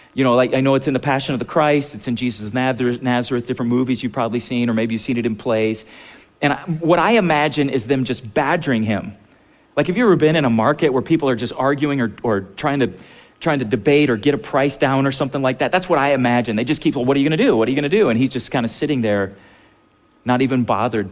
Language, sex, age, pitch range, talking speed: English, male, 40-59, 115-150 Hz, 280 wpm